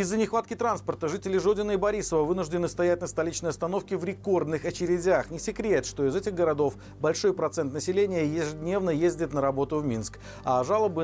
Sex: male